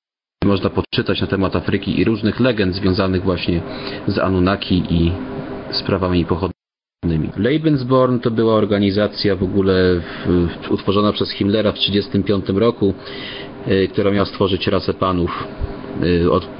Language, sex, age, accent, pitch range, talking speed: Polish, male, 30-49, native, 90-105 Hz, 135 wpm